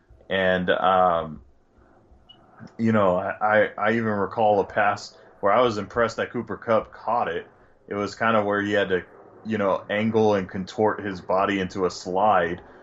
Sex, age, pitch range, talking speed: male, 20-39, 95-110 Hz, 175 wpm